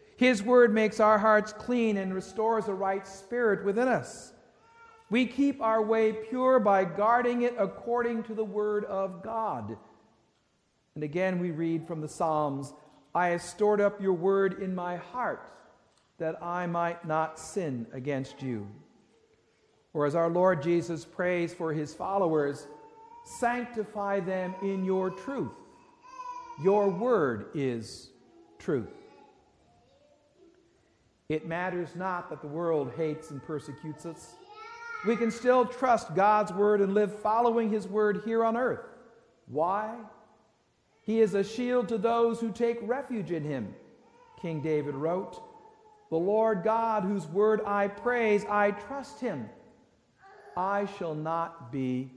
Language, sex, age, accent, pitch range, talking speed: English, male, 50-69, American, 170-235 Hz, 140 wpm